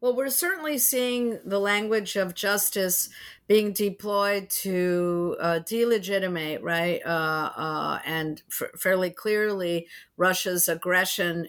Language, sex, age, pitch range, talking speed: English, female, 50-69, 175-215 Hz, 115 wpm